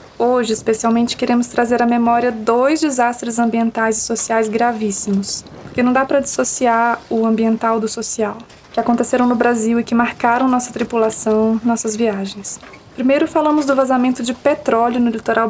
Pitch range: 220-245 Hz